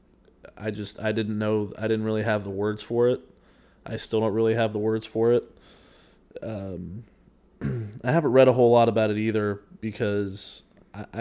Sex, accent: male, American